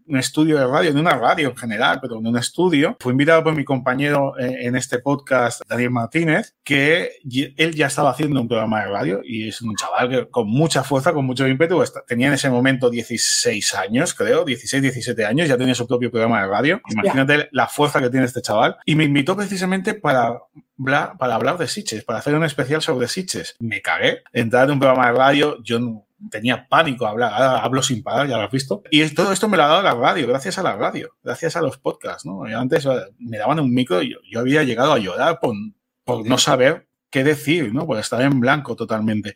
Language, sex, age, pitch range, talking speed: Spanish, male, 30-49, 120-155 Hz, 225 wpm